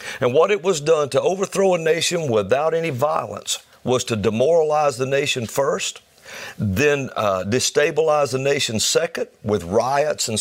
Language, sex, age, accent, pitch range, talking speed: English, male, 50-69, American, 120-175 Hz, 155 wpm